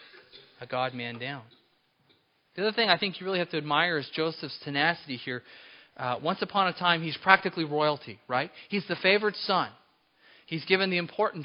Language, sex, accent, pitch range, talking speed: English, male, American, 130-180 Hz, 180 wpm